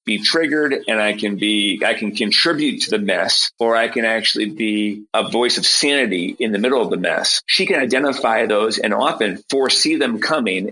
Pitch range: 105-130 Hz